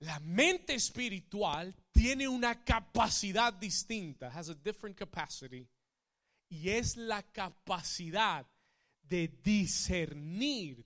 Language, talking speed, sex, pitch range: Spanish, 95 wpm, male, 170-215 Hz